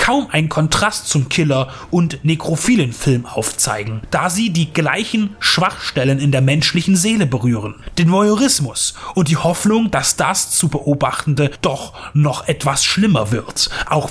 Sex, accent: male, German